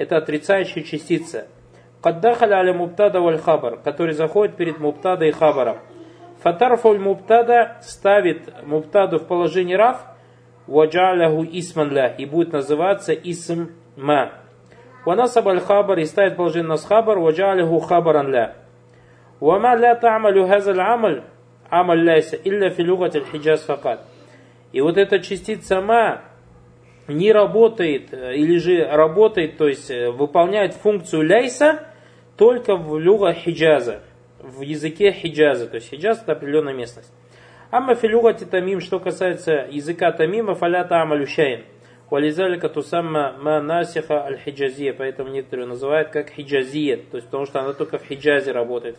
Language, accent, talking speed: Russian, native, 130 wpm